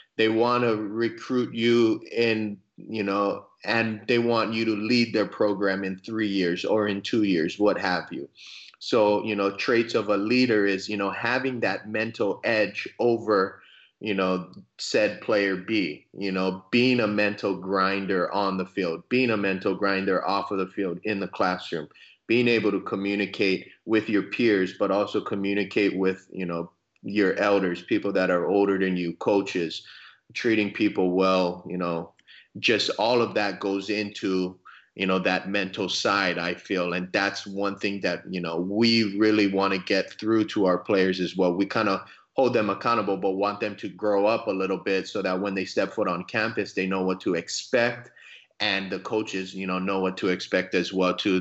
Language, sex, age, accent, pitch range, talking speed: English, male, 30-49, American, 95-105 Hz, 190 wpm